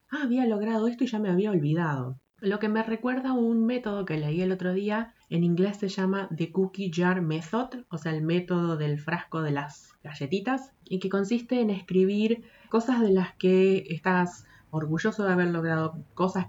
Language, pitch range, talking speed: Spanish, 160-210 Hz, 190 wpm